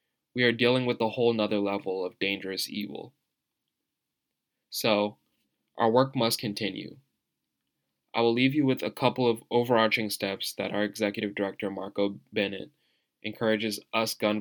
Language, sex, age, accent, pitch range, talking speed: English, male, 10-29, American, 105-115 Hz, 145 wpm